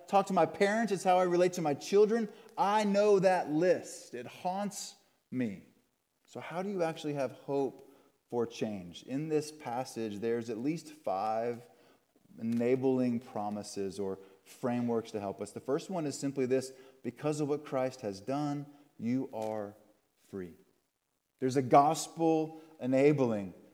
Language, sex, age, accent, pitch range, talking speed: English, male, 30-49, American, 140-200 Hz, 150 wpm